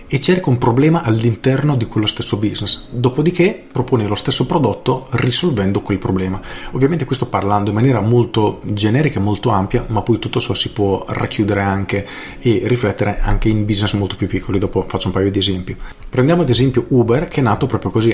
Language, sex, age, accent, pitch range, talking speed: Italian, male, 40-59, native, 100-125 Hz, 190 wpm